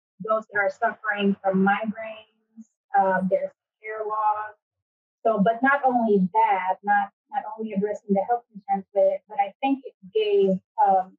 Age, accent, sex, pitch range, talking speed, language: 30-49, American, female, 195-270 Hz, 150 wpm, English